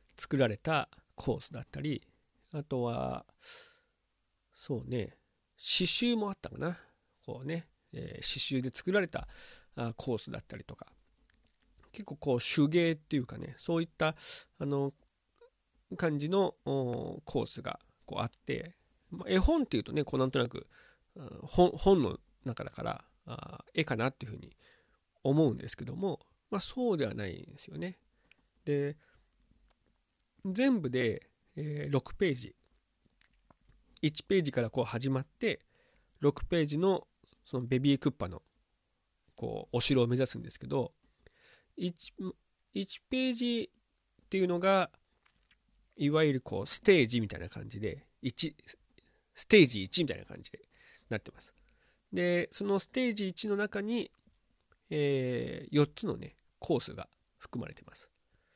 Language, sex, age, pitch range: Japanese, male, 40-59, 130-190 Hz